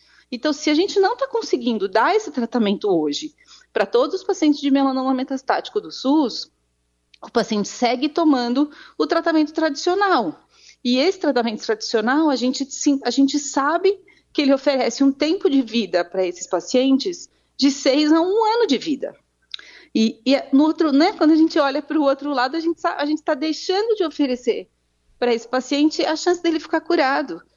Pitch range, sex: 245-335 Hz, female